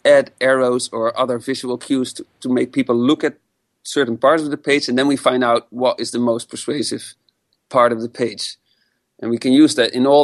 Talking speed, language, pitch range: 225 wpm, English, 120-145 Hz